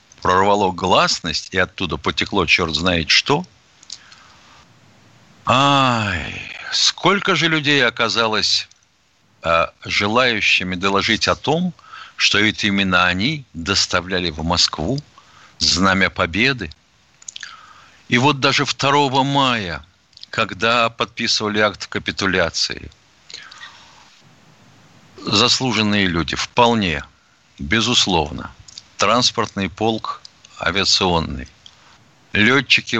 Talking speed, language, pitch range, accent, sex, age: 80 wpm, Russian, 95-120 Hz, native, male, 60-79